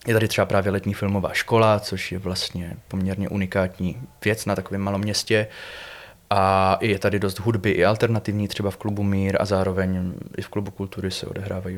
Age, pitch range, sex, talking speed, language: 20-39, 95-105 Hz, male, 185 wpm, Czech